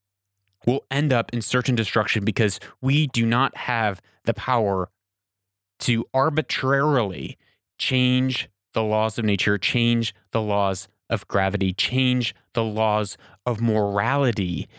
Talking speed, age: 125 wpm, 20-39